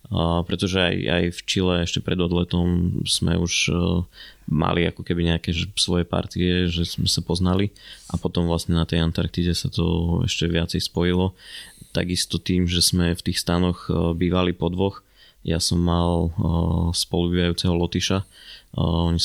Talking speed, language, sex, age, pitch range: 145 wpm, Slovak, male, 20-39, 85-90 Hz